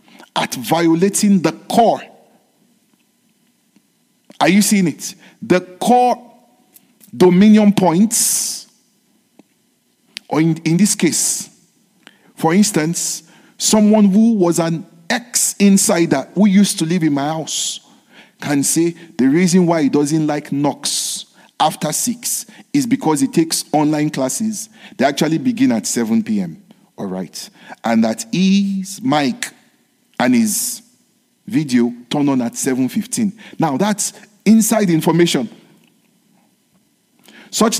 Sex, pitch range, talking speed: male, 165-225 Hz, 115 wpm